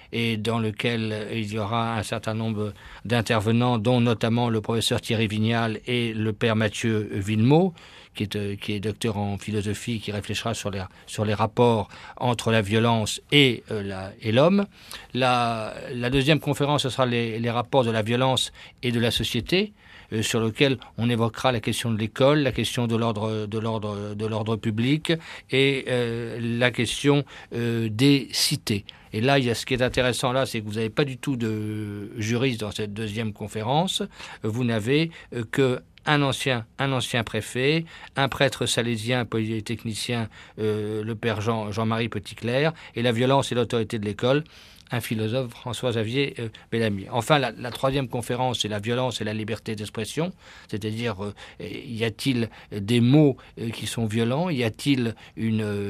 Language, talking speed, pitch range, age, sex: French, 175 wpm, 110-125 Hz, 50-69, male